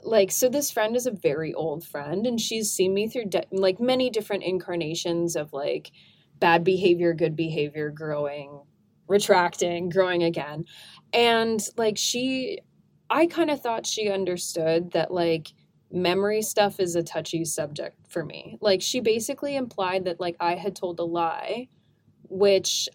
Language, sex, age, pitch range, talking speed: English, female, 20-39, 170-205 Hz, 155 wpm